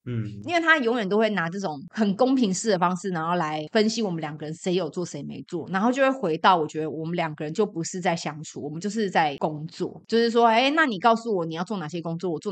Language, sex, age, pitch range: Chinese, female, 30-49, 165-235 Hz